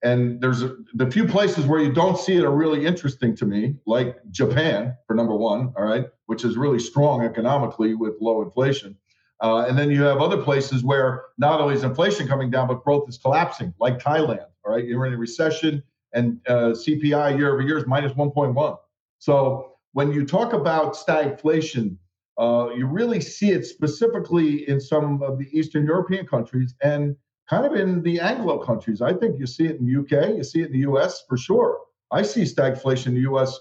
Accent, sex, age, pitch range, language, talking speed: American, male, 50-69, 125-150 Hz, English, 200 wpm